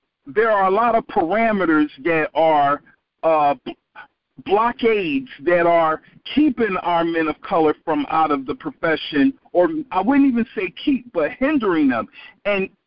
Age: 50-69